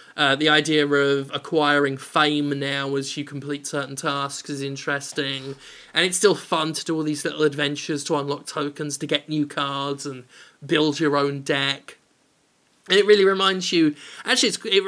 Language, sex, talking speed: English, male, 180 wpm